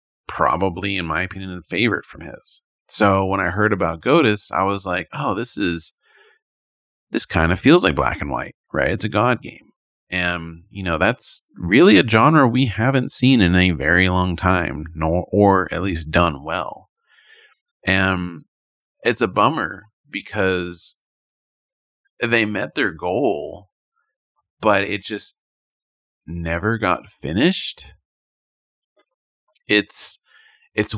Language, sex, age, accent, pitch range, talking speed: English, male, 30-49, American, 85-105 Hz, 140 wpm